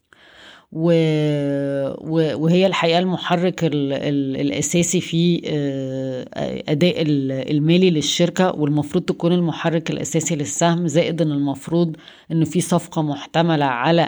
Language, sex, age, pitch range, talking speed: Arabic, female, 20-39, 145-165 Hz, 100 wpm